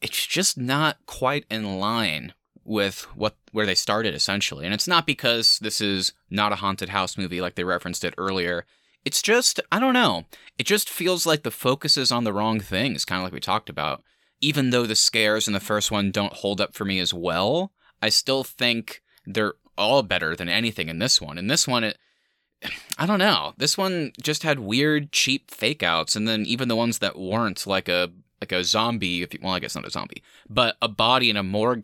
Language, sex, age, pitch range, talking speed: English, male, 20-39, 95-130 Hz, 215 wpm